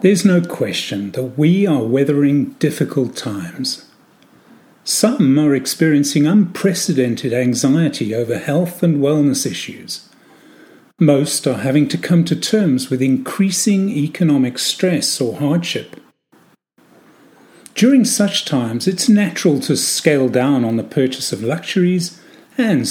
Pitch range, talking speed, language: 130-185 Hz, 120 wpm, English